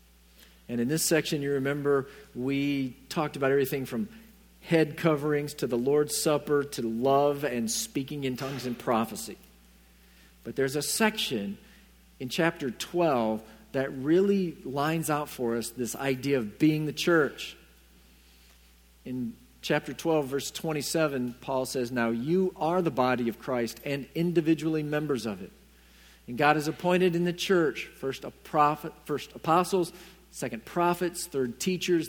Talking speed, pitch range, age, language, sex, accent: 150 wpm, 120-170 Hz, 50-69, English, male, American